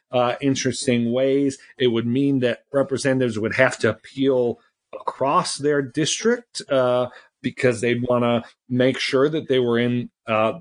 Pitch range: 125-155 Hz